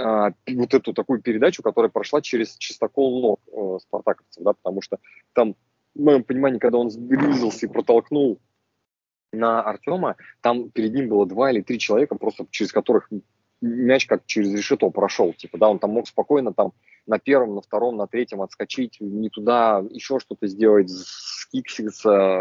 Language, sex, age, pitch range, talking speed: Russian, male, 20-39, 100-120 Hz, 160 wpm